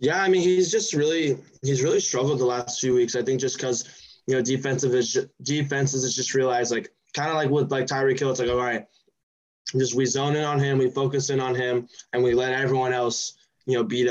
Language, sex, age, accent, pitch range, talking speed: English, male, 10-29, American, 115-135 Hz, 245 wpm